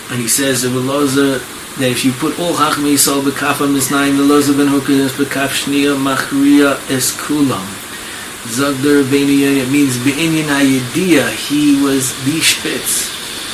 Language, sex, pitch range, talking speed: English, male, 130-145 Hz, 140 wpm